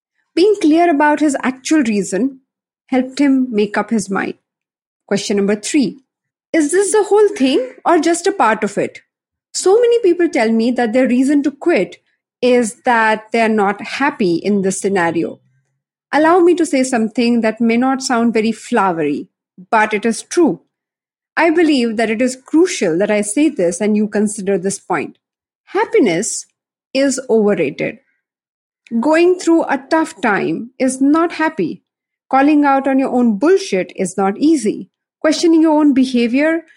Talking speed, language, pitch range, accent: 160 wpm, English, 220-310 Hz, Indian